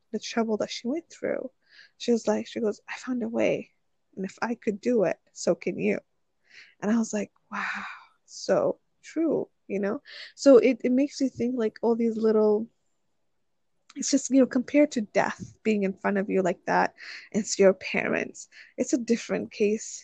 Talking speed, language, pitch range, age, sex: 190 wpm, English, 200-245 Hz, 20-39, female